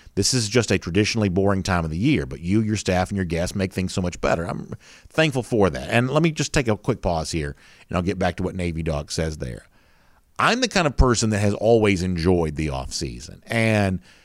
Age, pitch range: 50-69, 85-115 Hz